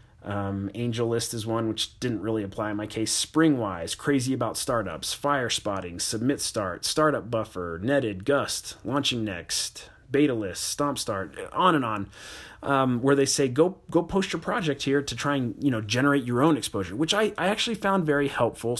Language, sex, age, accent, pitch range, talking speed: English, male, 30-49, American, 110-145 Hz, 185 wpm